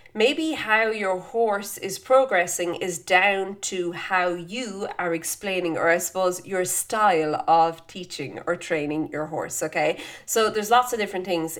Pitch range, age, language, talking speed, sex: 165-215 Hz, 30-49, English, 160 wpm, female